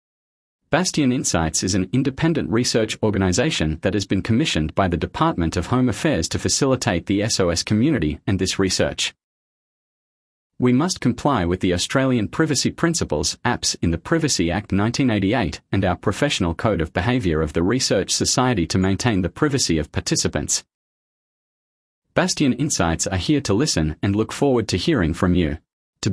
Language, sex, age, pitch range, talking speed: English, male, 40-59, 90-125 Hz, 160 wpm